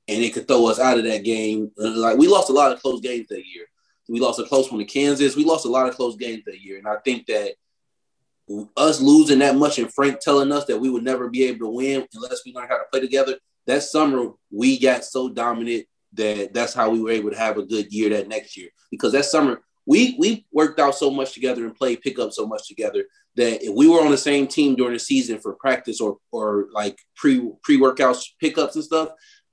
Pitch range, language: 115-155 Hz, English